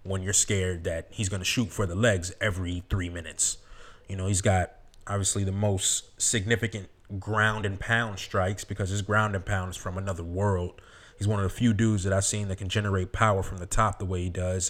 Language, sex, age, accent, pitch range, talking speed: English, male, 20-39, American, 95-110 Hz, 220 wpm